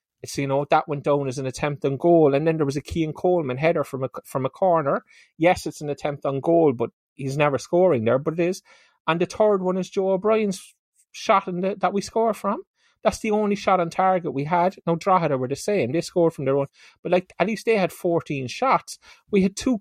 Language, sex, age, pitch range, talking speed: English, male, 30-49, 150-190 Hz, 240 wpm